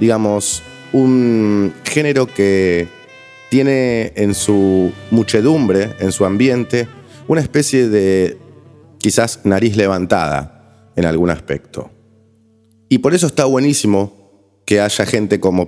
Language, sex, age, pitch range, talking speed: Spanish, male, 30-49, 90-110 Hz, 110 wpm